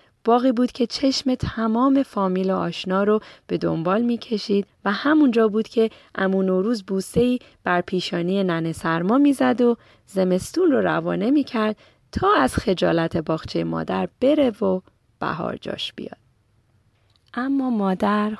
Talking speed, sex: 135 wpm, female